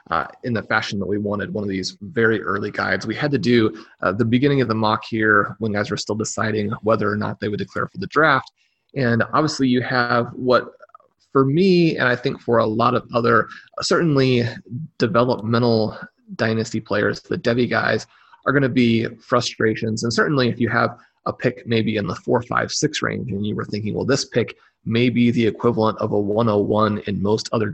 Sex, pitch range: male, 110-125 Hz